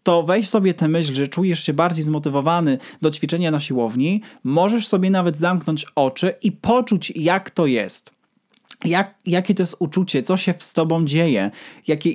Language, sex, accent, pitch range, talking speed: Polish, male, native, 150-185 Hz, 170 wpm